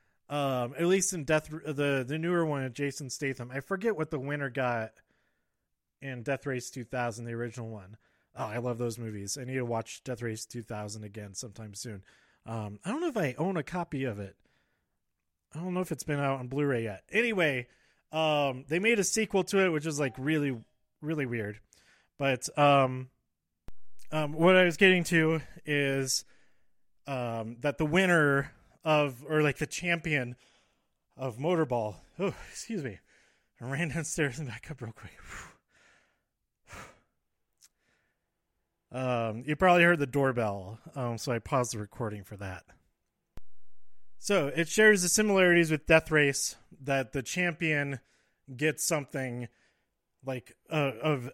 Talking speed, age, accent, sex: 160 wpm, 30-49, American, male